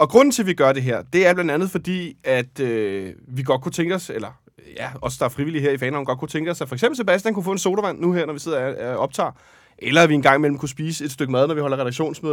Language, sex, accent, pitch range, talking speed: Danish, male, native, 130-165 Hz, 305 wpm